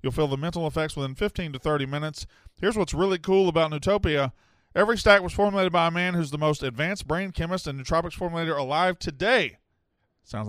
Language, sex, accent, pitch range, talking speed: English, male, American, 130-170 Hz, 200 wpm